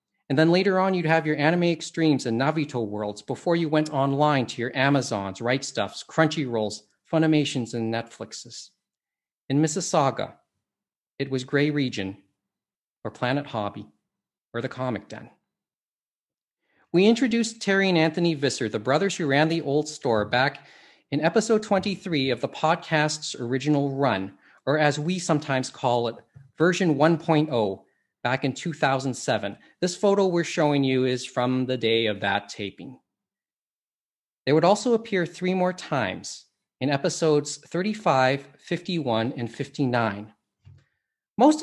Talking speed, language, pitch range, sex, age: 140 wpm, English, 125-165 Hz, male, 40-59